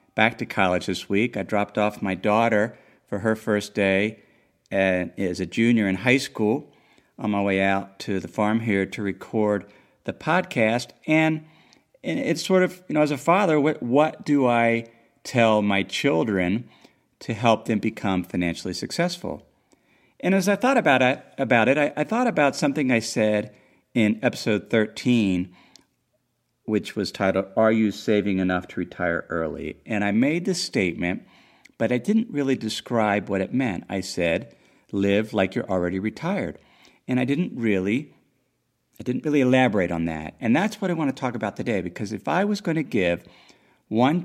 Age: 50-69